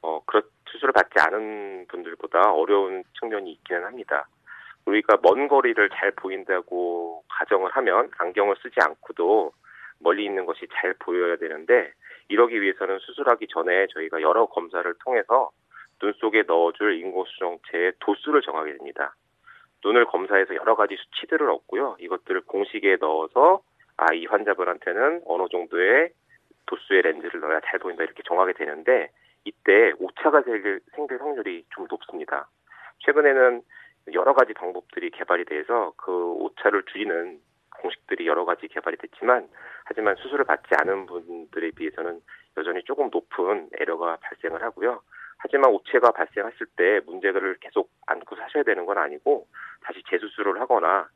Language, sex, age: Korean, male, 30-49